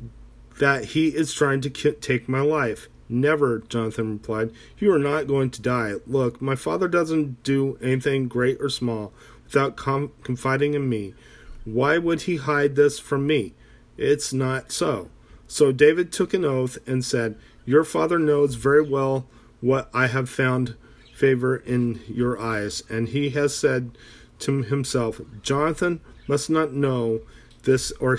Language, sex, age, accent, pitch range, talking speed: English, male, 40-59, American, 120-145 Hz, 155 wpm